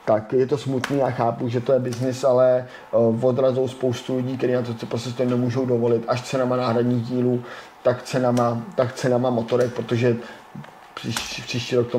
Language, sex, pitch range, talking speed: Czech, male, 115-130 Hz, 180 wpm